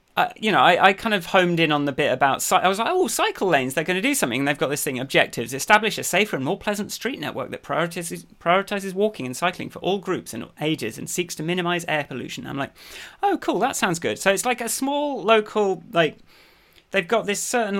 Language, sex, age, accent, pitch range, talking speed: English, male, 30-49, British, 140-190 Hz, 255 wpm